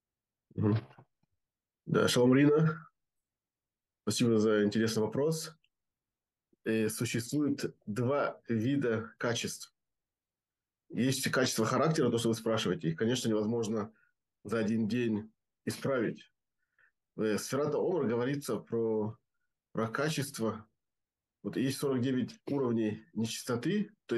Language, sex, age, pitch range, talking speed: Russian, male, 20-39, 110-140 Hz, 90 wpm